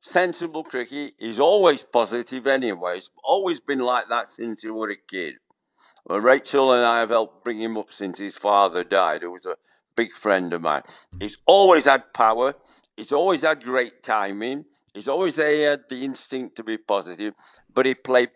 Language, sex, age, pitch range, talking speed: English, male, 60-79, 105-145 Hz, 190 wpm